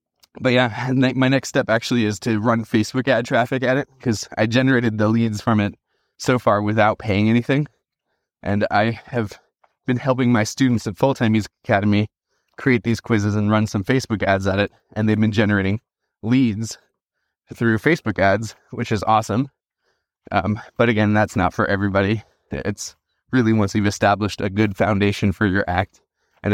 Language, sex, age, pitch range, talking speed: English, male, 20-39, 105-130 Hz, 175 wpm